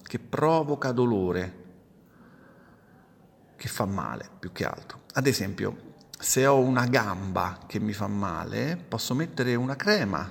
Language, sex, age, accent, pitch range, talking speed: Italian, male, 40-59, native, 100-135 Hz, 135 wpm